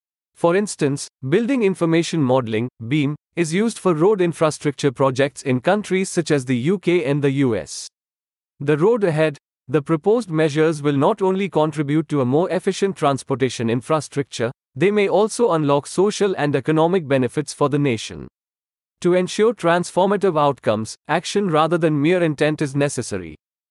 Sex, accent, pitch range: male, Indian, 140-180 Hz